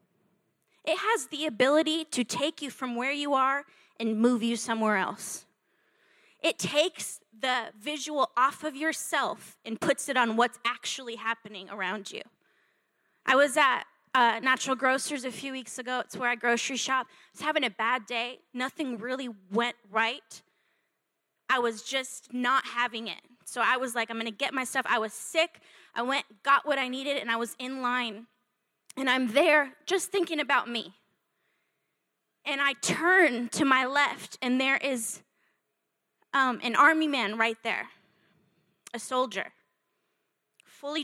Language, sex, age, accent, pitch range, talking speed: English, female, 10-29, American, 235-280 Hz, 160 wpm